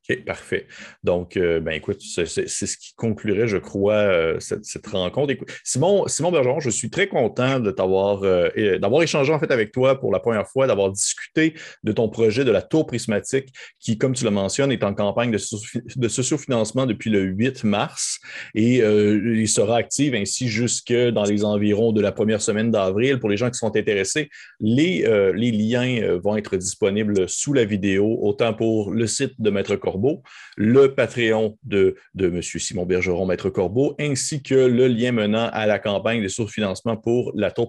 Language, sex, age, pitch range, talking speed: French, male, 30-49, 105-125 Hz, 200 wpm